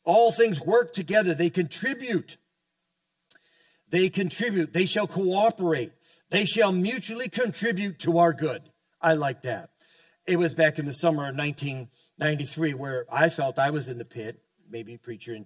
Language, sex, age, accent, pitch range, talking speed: English, male, 50-69, American, 140-170 Hz, 155 wpm